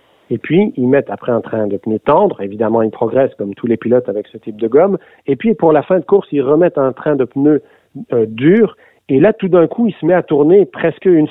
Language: French